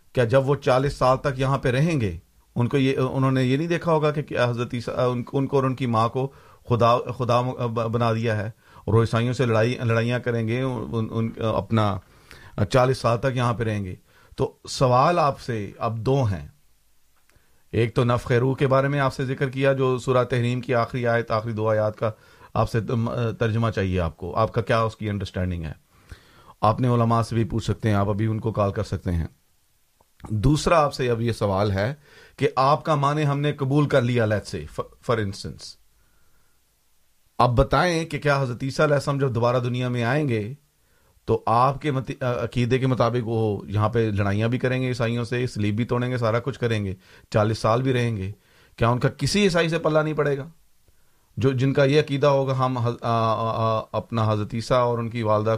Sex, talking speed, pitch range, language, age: male, 205 wpm, 110-135 Hz, Urdu, 50-69